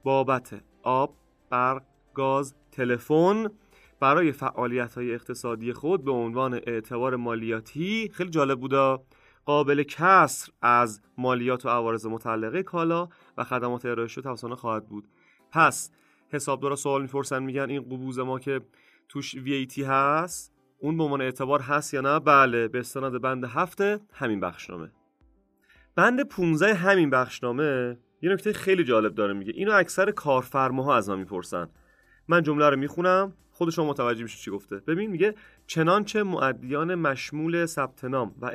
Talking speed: 140 wpm